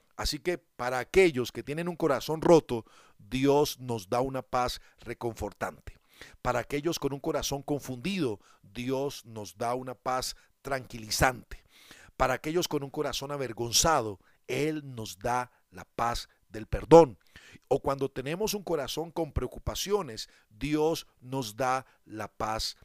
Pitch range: 120-160 Hz